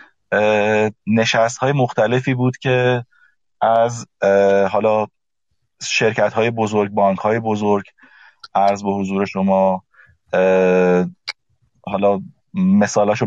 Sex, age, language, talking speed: male, 30-49, Persian, 85 wpm